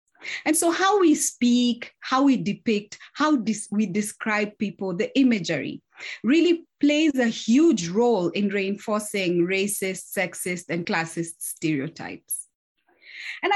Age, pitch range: 30-49, 185-240 Hz